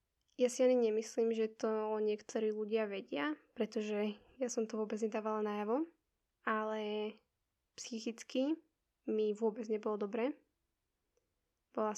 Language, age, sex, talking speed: Slovak, 10-29, female, 120 wpm